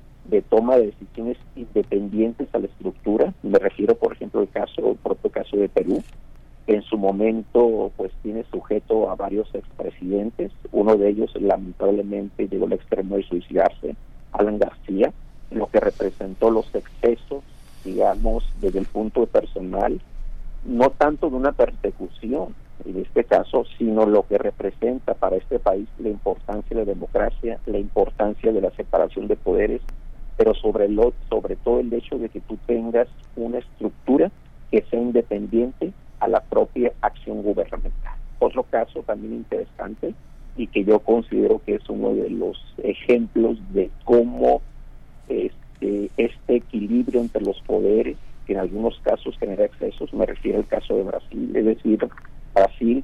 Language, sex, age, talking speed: Spanish, male, 50-69, 155 wpm